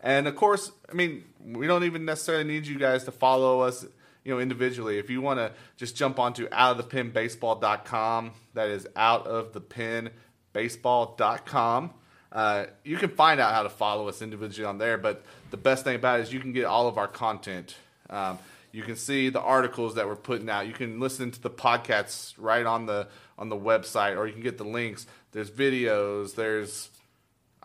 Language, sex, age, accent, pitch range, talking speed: English, male, 30-49, American, 110-130 Hz, 190 wpm